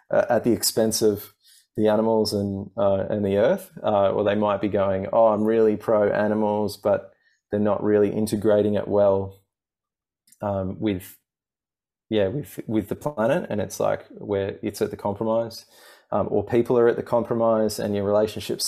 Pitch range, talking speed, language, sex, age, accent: 95-110 Hz, 175 wpm, English, male, 20-39, Australian